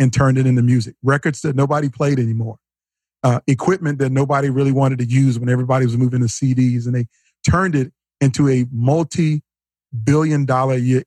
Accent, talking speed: American, 170 wpm